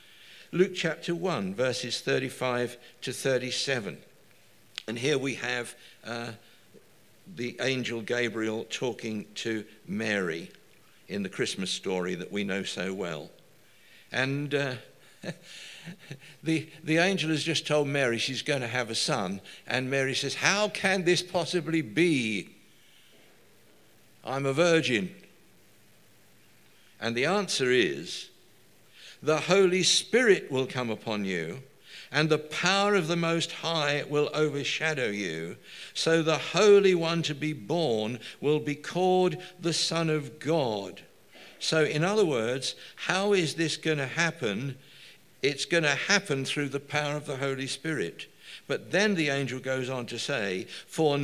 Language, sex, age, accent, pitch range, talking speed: English, male, 60-79, British, 120-165 Hz, 140 wpm